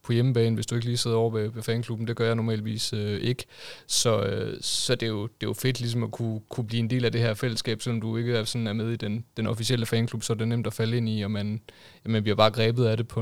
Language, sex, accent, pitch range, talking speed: Danish, male, native, 110-120 Hz, 310 wpm